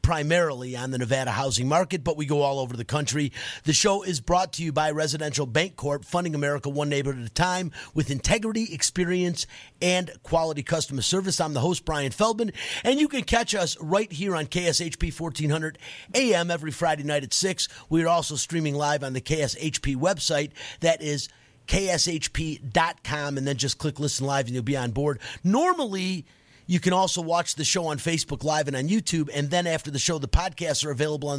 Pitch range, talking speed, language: 140-180 Hz, 195 wpm, English